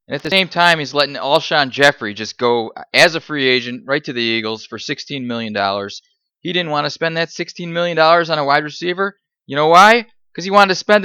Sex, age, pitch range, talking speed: male, 20-39, 145-215 Hz, 230 wpm